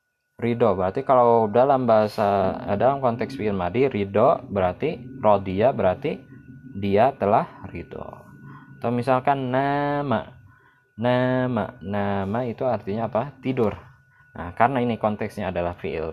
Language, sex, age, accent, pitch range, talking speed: Indonesian, male, 20-39, native, 95-135 Hz, 115 wpm